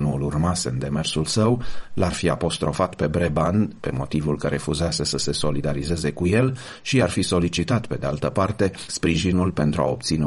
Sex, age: male, 40-59